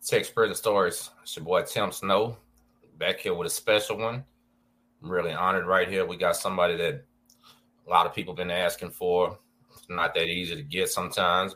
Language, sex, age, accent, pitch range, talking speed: English, male, 30-49, American, 95-120 Hz, 195 wpm